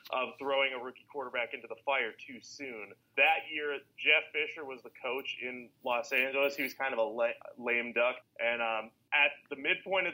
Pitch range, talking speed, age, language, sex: 115-145 Hz, 195 wpm, 30-49, English, male